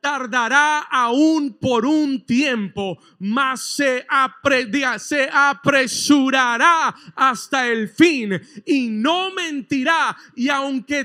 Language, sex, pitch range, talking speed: Spanish, male, 200-280 Hz, 85 wpm